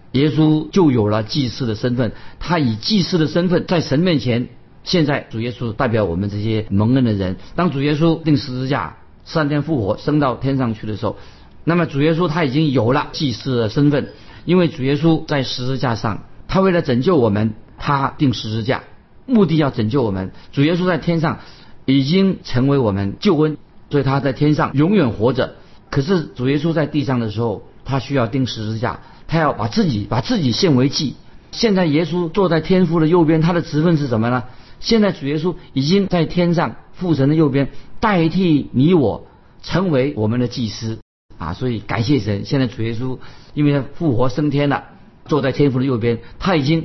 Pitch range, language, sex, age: 120-160 Hz, Chinese, male, 50-69